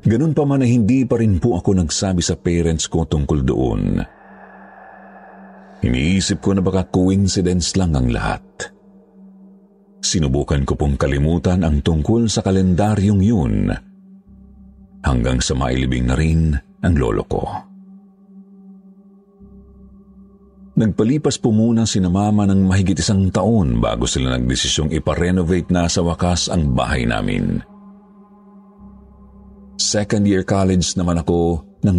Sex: male